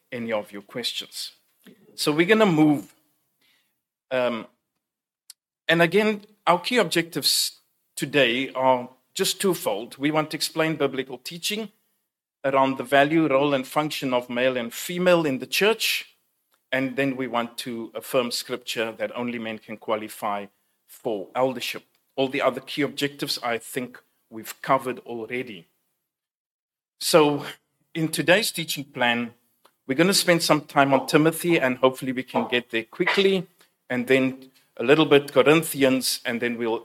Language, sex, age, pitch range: English, male, 40-59, 120-155 Hz